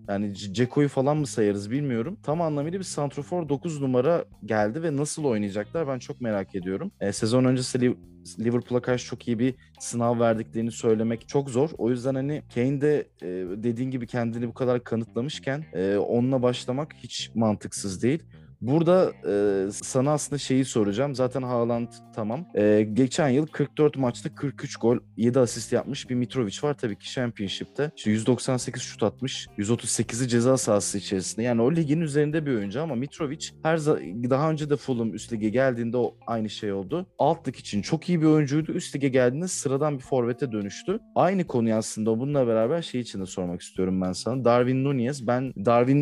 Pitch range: 115-145 Hz